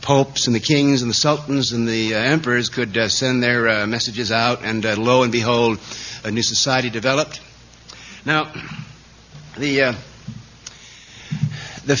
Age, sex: 60-79, male